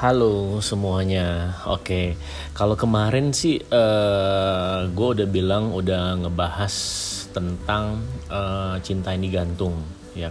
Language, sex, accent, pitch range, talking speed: Indonesian, male, native, 95-120 Hz, 115 wpm